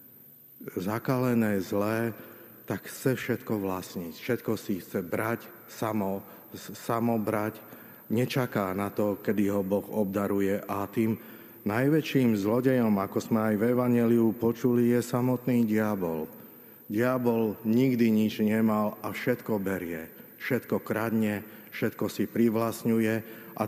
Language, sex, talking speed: Slovak, male, 120 wpm